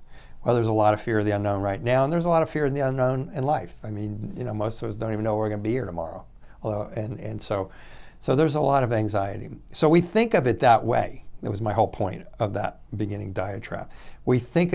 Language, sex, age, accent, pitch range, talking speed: English, male, 60-79, American, 105-125 Hz, 275 wpm